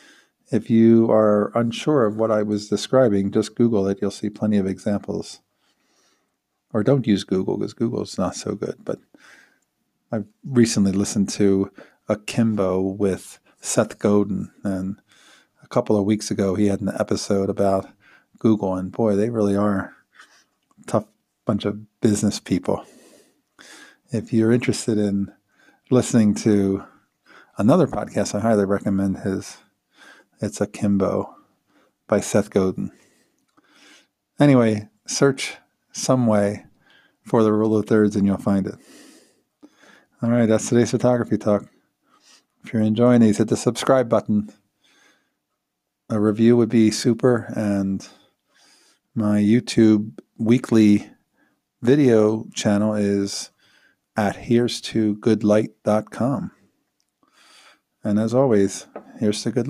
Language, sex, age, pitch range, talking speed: English, male, 40-59, 100-115 Hz, 125 wpm